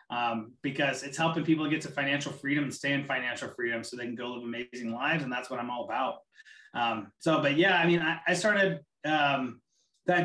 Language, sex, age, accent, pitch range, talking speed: English, male, 30-49, American, 135-165 Hz, 225 wpm